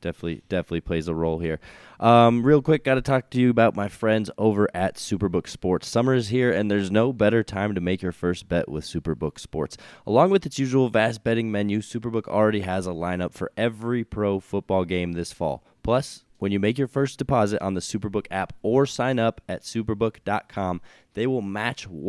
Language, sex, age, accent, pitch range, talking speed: English, male, 20-39, American, 90-115 Hz, 205 wpm